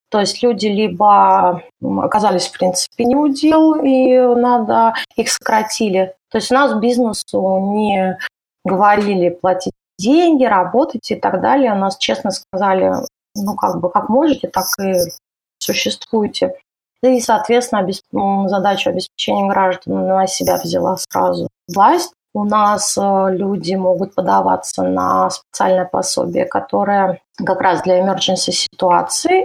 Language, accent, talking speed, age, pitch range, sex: Russian, native, 130 wpm, 20-39, 190-245 Hz, female